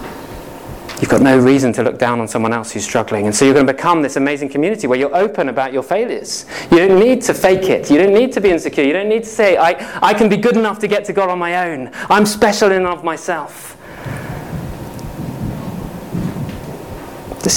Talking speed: 220 wpm